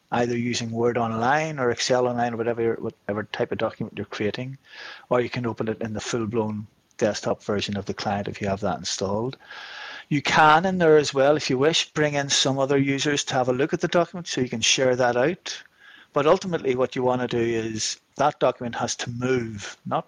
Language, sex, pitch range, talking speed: Swedish, male, 105-140 Hz, 220 wpm